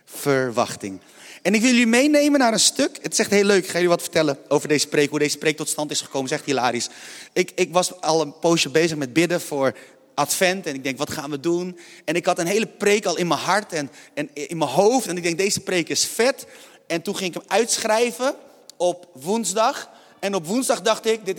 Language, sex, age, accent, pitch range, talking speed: Dutch, male, 30-49, Dutch, 150-220 Hz, 240 wpm